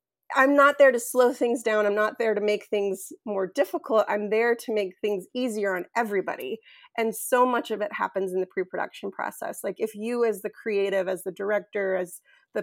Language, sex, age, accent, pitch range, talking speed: English, female, 30-49, American, 195-250 Hz, 210 wpm